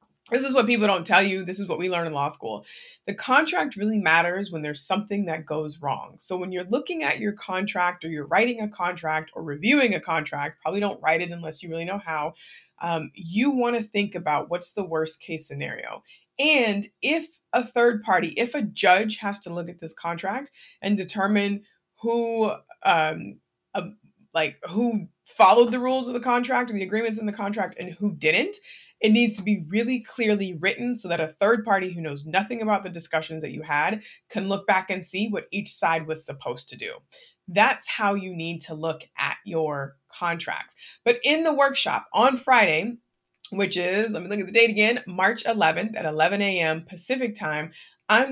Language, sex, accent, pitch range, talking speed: English, female, American, 170-225 Hz, 200 wpm